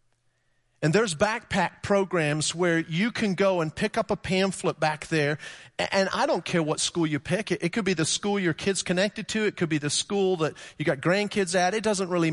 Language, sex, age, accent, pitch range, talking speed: English, male, 40-59, American, 150-215 Hz, 220 wpm